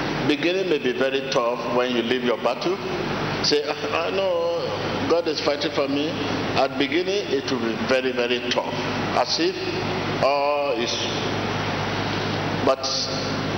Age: 50-69